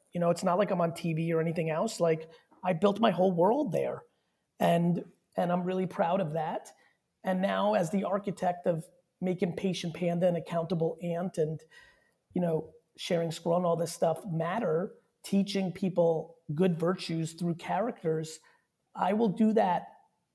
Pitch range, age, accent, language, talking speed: 165-195 Hz, 30-49, American, English, 170 wpm